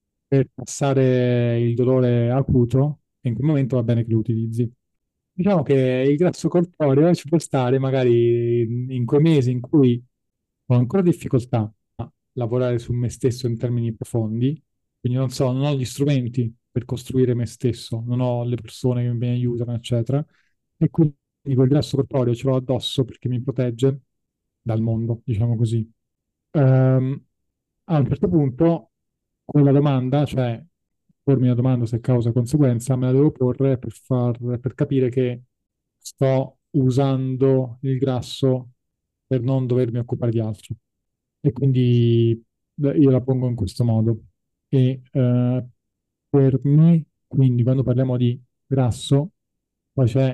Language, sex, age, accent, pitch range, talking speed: Italian, male, 30-49, native, 120-135 Hz, 150 wpm